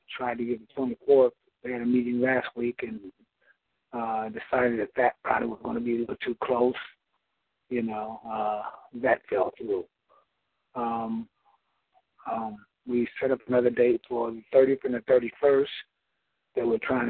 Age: 50-69